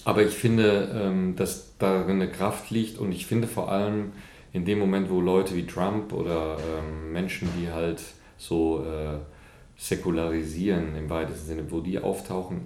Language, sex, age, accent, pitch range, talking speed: English, male, 40-59, German, 85-105 Hz, 150 wpm